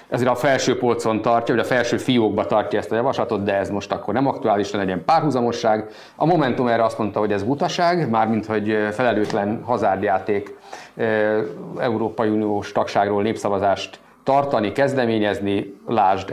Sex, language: male, Hungarian